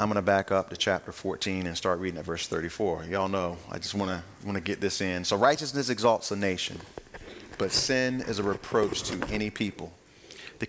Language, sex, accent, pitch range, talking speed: English, male, American, 100-130 Hz, 220 wpm